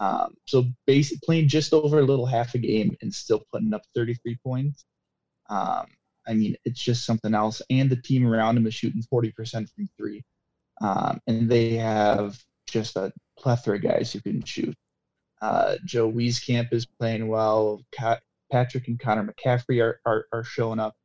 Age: 20-39